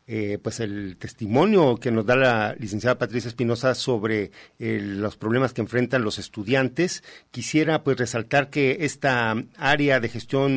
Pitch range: 120-145 Hz